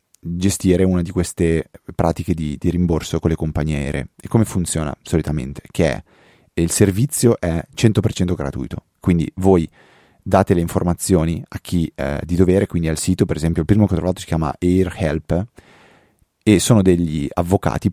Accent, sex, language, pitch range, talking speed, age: native, male, Italian, 80-100 Hz, 170 wpm, 30-49